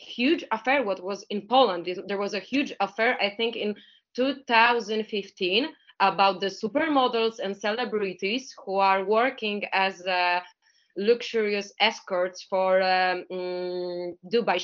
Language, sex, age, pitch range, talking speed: English, female, 20-39, 195-240 Hz, 120 wpm